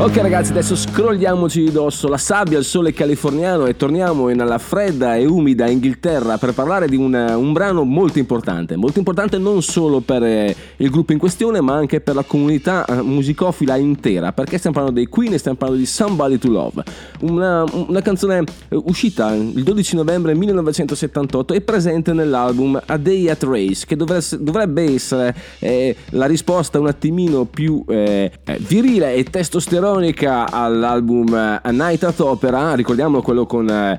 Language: Italian